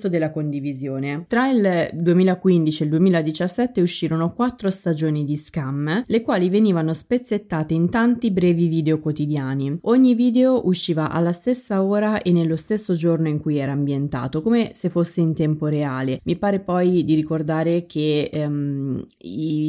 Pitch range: 155-205 Hz